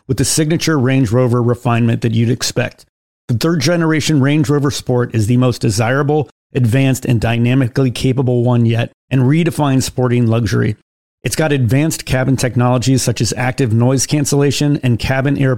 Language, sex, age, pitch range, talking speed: English, male, 40-59, 120-145 Hz, 160 wpm